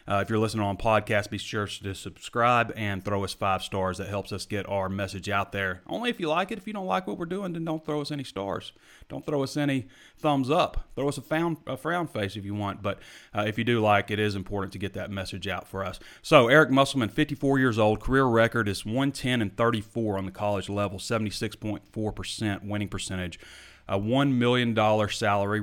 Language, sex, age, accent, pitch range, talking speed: English, male, 30-49, American, 100-115 Hz, 225 wpm